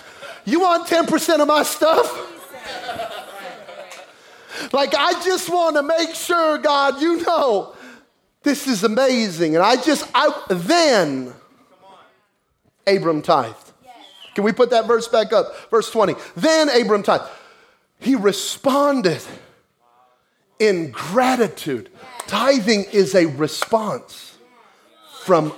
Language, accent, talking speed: English, American, 110 wpm